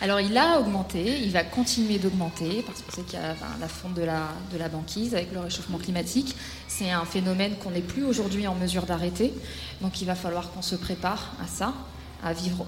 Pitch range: 175-210 Hz